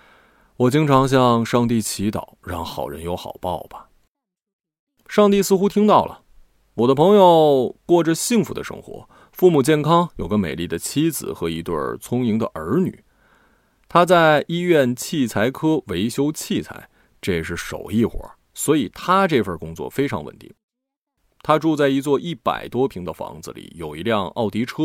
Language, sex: Chinese, male